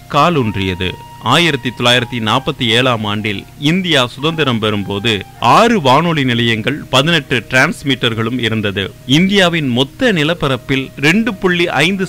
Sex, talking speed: male, 60 wpm